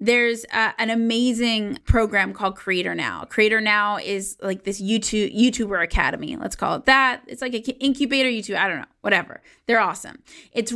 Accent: American